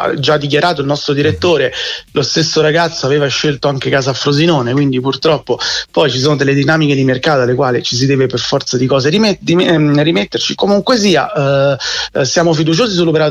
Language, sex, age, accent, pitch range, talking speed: Italian, male, 30-49, native, 135-160 Hz, 175 wpm